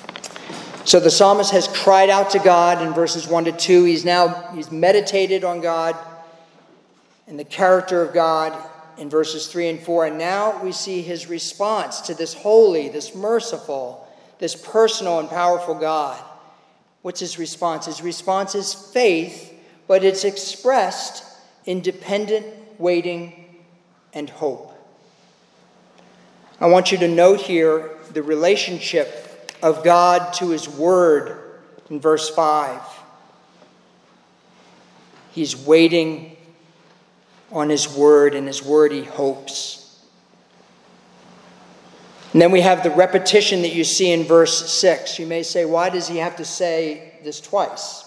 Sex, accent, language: male, American, English